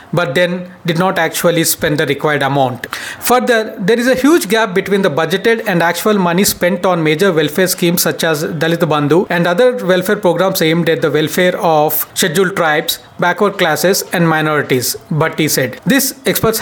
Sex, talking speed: male, 180 wpm